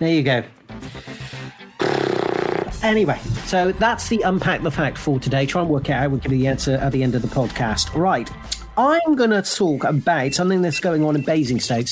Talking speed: 200 wpm